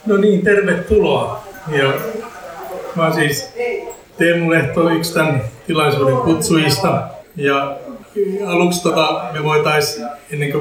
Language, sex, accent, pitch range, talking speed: Finnish, male, native, 135-160 Hz, 105 wpm